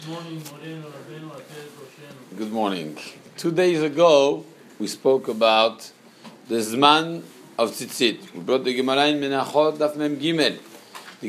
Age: 50-69